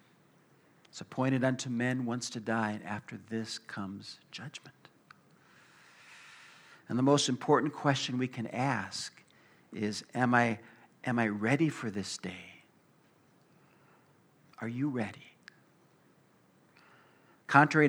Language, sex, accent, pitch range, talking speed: English, male, American, 105-130 Hz, 105 wpm